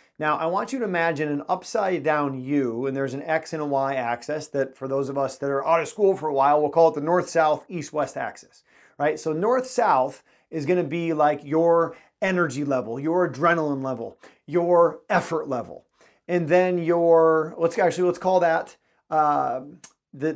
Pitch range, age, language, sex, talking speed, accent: 145-180 Hz, 40-59, English, male, 185 wpm, American